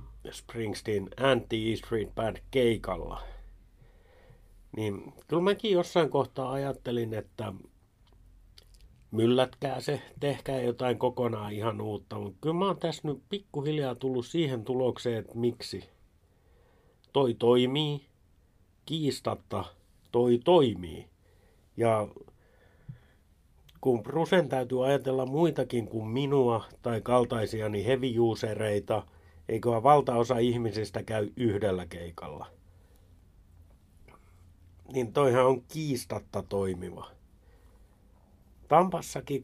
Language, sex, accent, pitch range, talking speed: Finnish, male, native, 95-135 Hz, 90 wpm